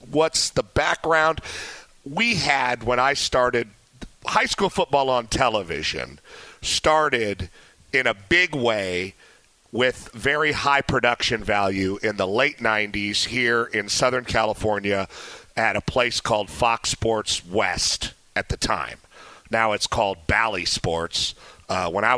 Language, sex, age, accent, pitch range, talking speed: English, male, 50-69, American, 100-125 Hz, 135 wpm